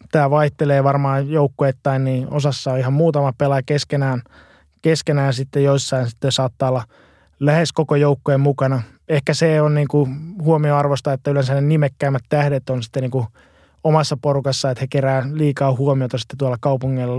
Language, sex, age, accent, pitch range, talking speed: Finnish, male, 20-39, native, 130-145 Hz, 155 wpm